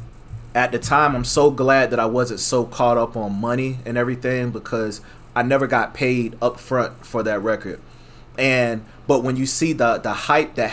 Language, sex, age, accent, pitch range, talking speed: English, male, 30-49, American, 115-140 Hz, 195 wpm